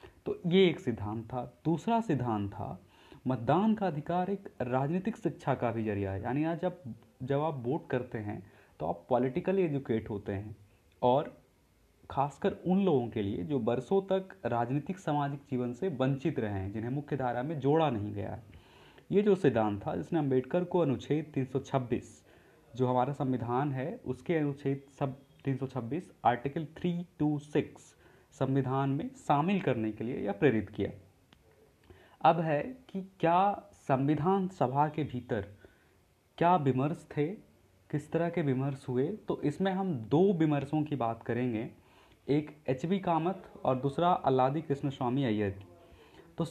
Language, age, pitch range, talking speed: Hindi, 30-49, 120-160 Hz, 150 wpm